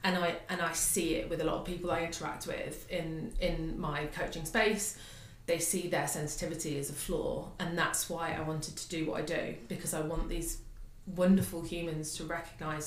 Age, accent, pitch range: 20-39, British, 150-180 Hz